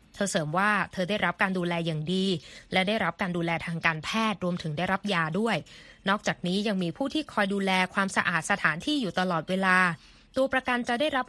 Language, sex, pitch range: Thai, female, 180-235 Hz